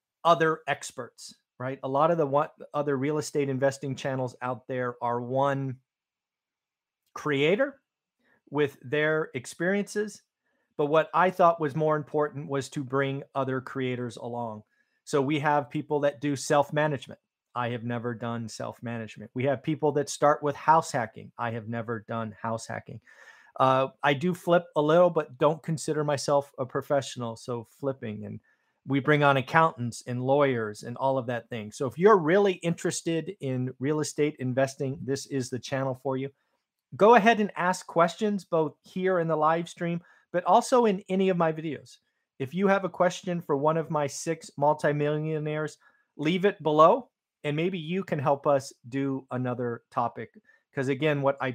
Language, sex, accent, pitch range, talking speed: English, male, American, 130-160 Hz, 170 wpm